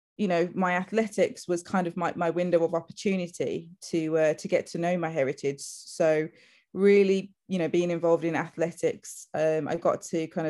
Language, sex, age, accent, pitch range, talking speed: English, female, 20-39, British, 160-195 Hz, 190 wpm